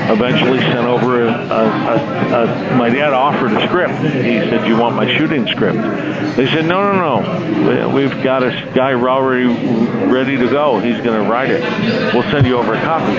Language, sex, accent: English, male, American